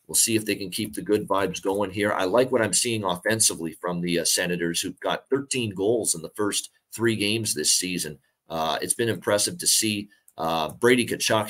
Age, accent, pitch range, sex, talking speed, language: 30-49, American, 90-110 Hz, male, 215 wpm, English